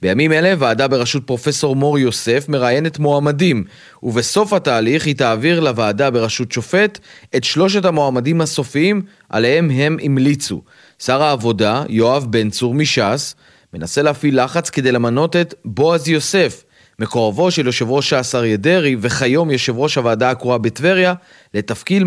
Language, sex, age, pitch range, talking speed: Hebrew, male, 30-49, 125-160 Hz, 140 wpm